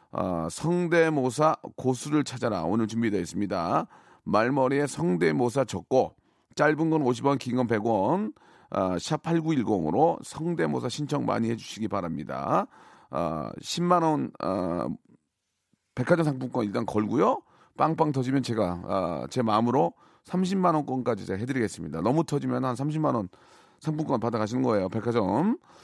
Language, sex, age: Korean, male, 40-59